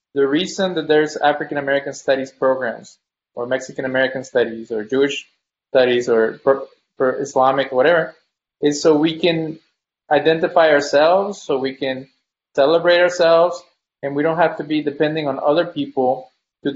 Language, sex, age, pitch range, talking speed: English, male, 20-39, 135-170 Hz, 135 wpm